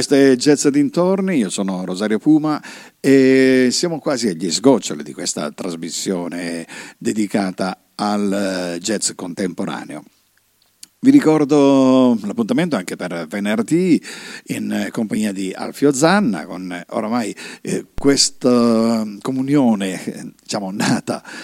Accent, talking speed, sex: native, 105 wpm, male